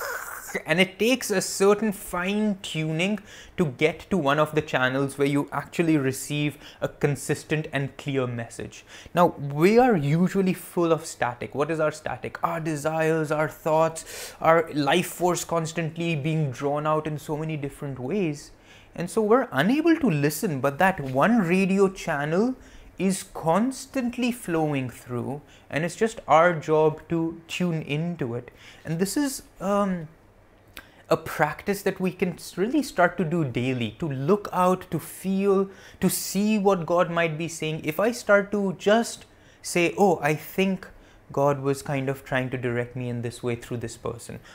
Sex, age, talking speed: male, 20-39, 165 wpm